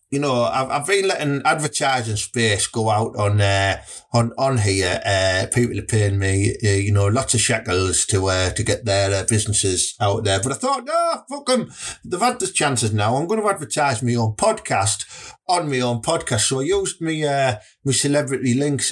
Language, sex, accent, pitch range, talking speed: English, male, British, 110-160 Hz, 210 wpm